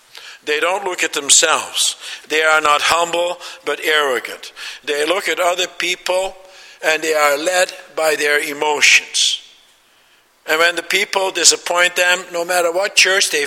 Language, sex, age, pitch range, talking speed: English, male, 60-79, 155-195 Hz, 150 wpm